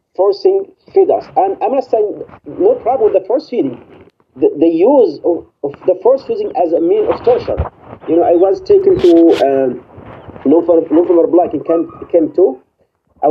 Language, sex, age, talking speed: English, male, 40-59, 185 wpm